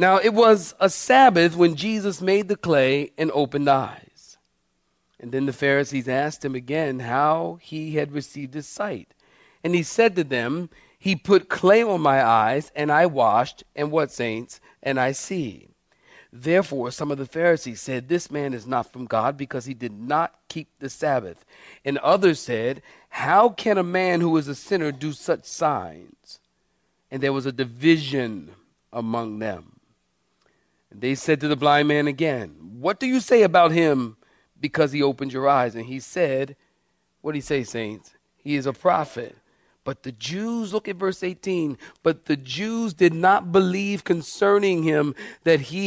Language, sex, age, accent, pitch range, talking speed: English, male, 40-59, American, 135-180 Hz, 175 wpm